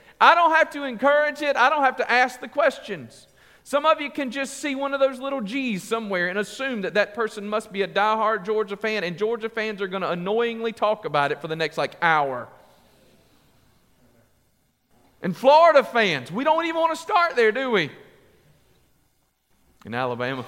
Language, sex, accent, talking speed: English, male, American, 190 wpm